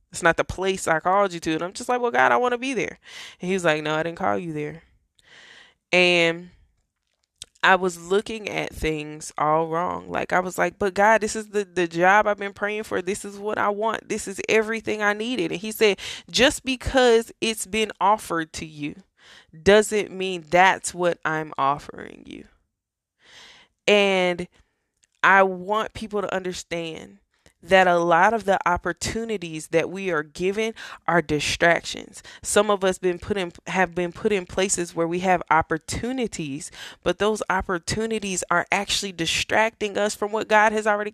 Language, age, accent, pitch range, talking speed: English, 20-39, American, 175-215 Hz, 180 wpm